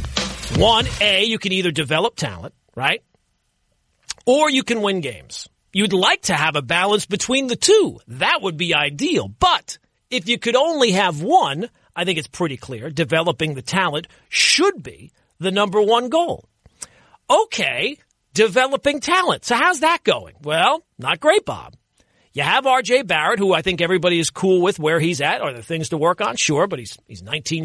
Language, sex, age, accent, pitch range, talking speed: English, male, 40-59, American, 165-255 Hz, 180 wpm